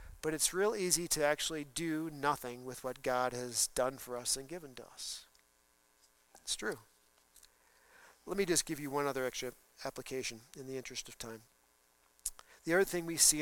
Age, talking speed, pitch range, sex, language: 50-69, 180 wpm, 140-205 Hz, male, English